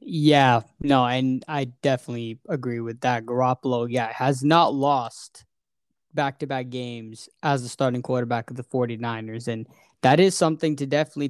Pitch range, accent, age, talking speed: 130-160 Hz, American, 10-29, 150 wpm